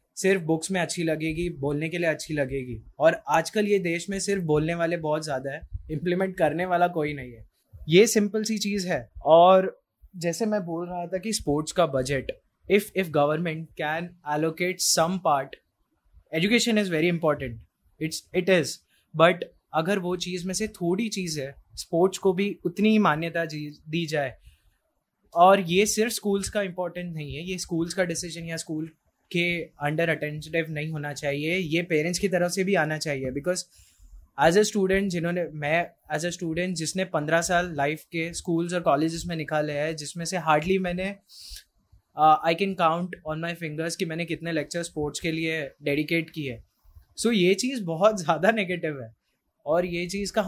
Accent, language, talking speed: native, Hindi, 180 wpm